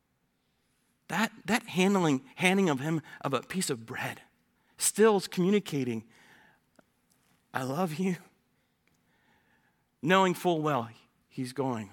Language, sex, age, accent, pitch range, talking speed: English, male, 40-59, American, 130-180 Hz, 110 wpm